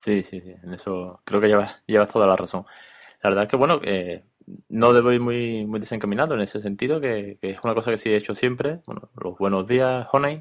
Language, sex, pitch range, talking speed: Spanish, male, 100-125 Hz, 240 wpm